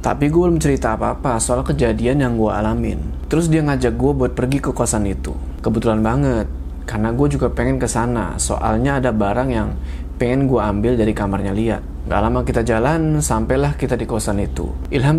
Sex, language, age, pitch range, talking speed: male, Indonesian, 20-39, 105-140 Hz, 180 wpm